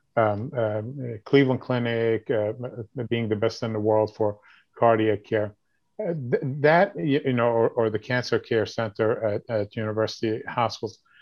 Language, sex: English, male